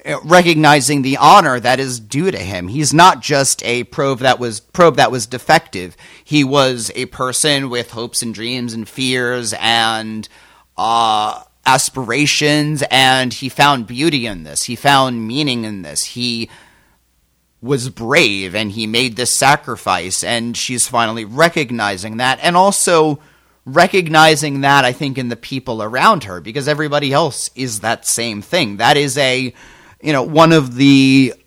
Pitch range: 115-145 Hz